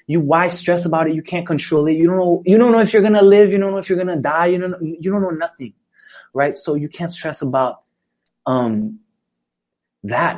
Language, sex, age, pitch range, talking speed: English, male, 20-39, 125-165 Hz, 235 wpm